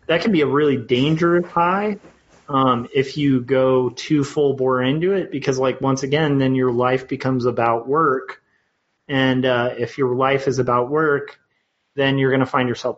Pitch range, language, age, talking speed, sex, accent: 120-140 Hz, English, 30-49, 185 wpm, male, American